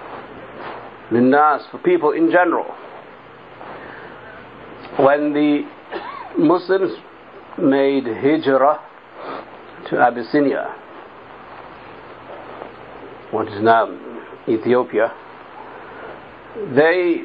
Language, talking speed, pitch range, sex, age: English, 60 wpm, 130-165 Hz, male, 60-79